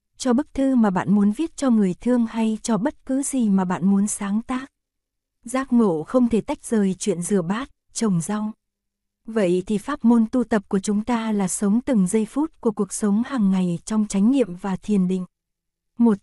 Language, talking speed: Vietnamese, 210 wpm